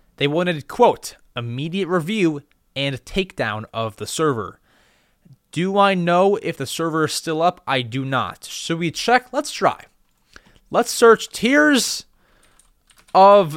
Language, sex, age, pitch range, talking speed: English, male, 20-39, 135-190 Hz, 140 wpm